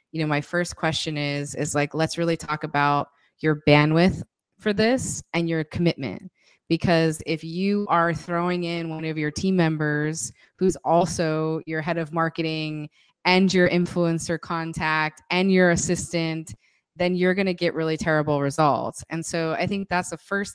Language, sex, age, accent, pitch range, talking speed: English, female, 20-39, American, 155-175 Hz, 170 wpm